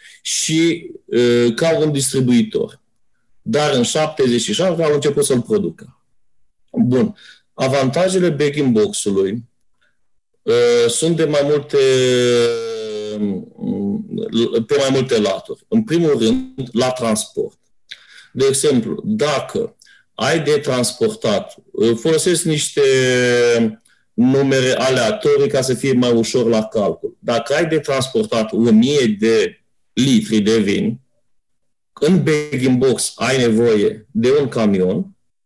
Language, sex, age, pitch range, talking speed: Romanian, male, 40-59, 120-170 Hz, 105 wpm